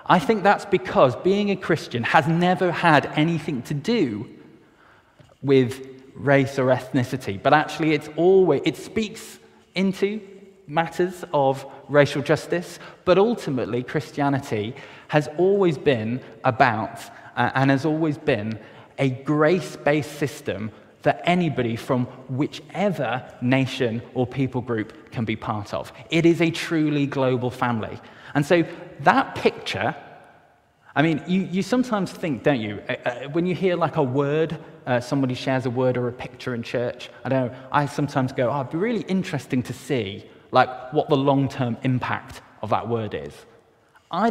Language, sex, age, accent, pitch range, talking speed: English, male, 20-39, British, 125-160 Hz, 155 wpm